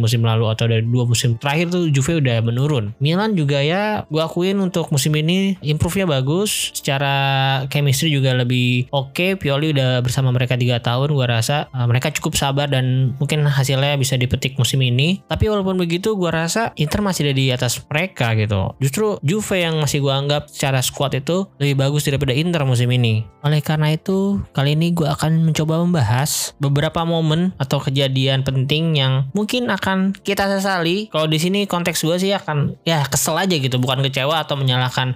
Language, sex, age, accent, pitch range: Chinese, male, 20-39, Indonesian, 130-160 Hz